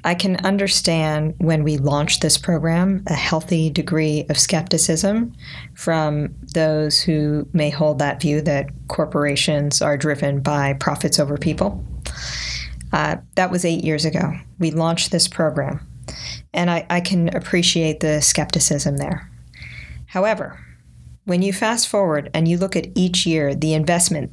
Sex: female